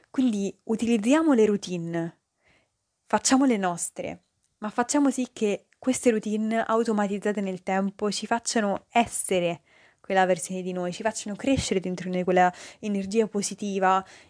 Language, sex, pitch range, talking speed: Italian, female, 185-215 Hz, 135 wpm